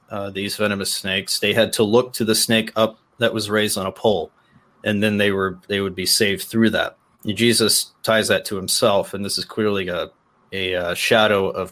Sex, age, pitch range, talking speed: male, 30-49, 100-115 Hz, 220 wpm